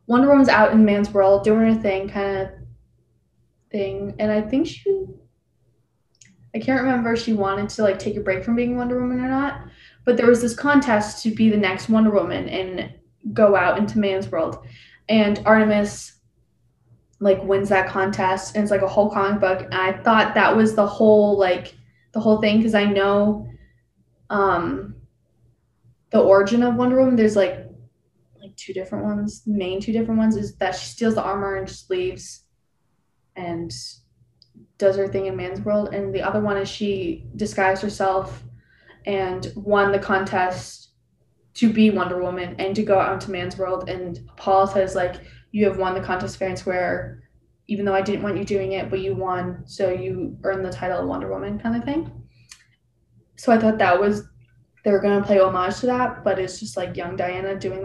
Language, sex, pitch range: English, female, 185-215 Hz